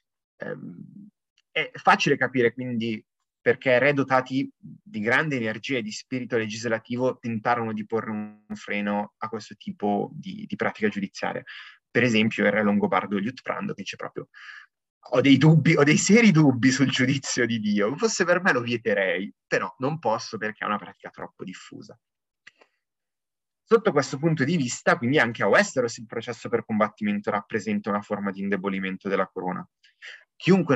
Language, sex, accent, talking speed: Italian, male, native, 155 wpm